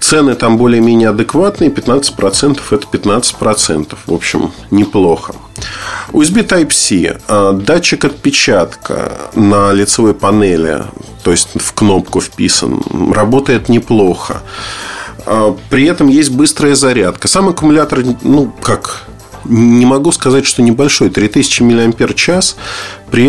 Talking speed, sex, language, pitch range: 105 wpm, male, Russian, 100-135 Hz